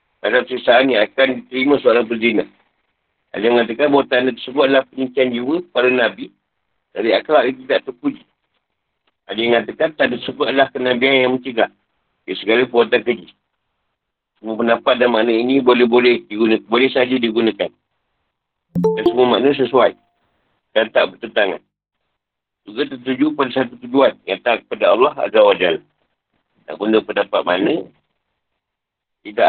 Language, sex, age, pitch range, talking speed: Malay, male, 50-69, 120-135 Hz, 145 wpm